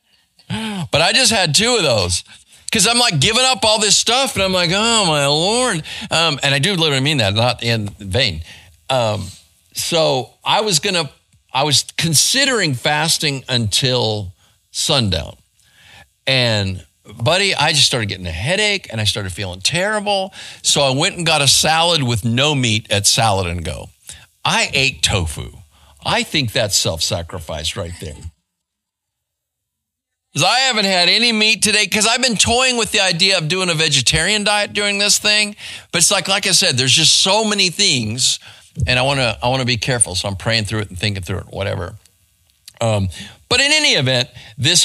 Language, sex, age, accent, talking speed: English, male, 50-69, American, 180 wpm